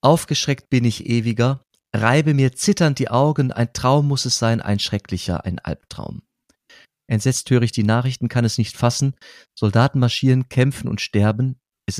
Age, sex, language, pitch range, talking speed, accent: 40-59, male, German, 110-140 Hz, 165 wpm, German